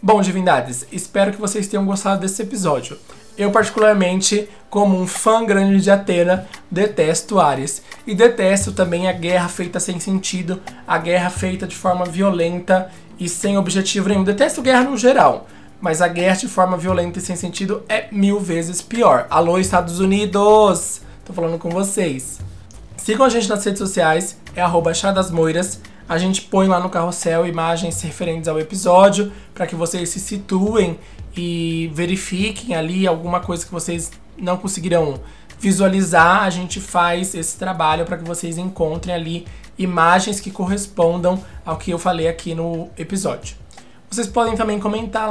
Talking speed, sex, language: 160 wpm, male, Portuguese